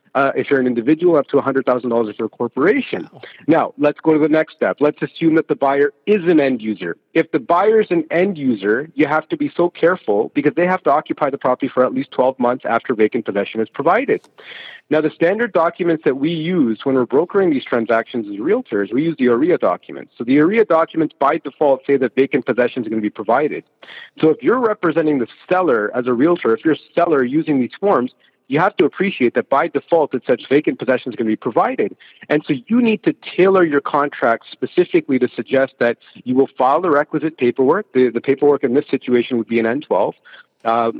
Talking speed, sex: 225 wpm, male